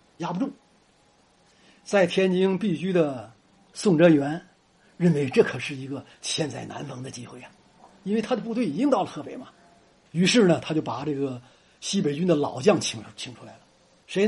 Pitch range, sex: 145-215 Hz, male